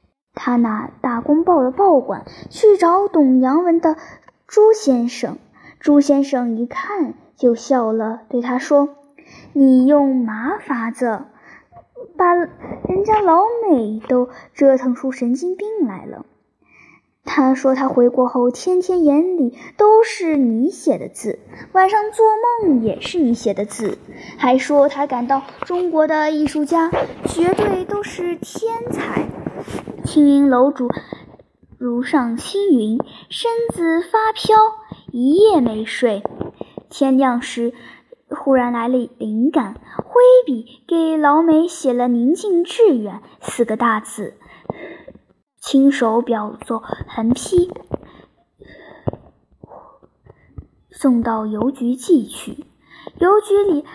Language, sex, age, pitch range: Chinese, male, 10-29, 245-360 Hz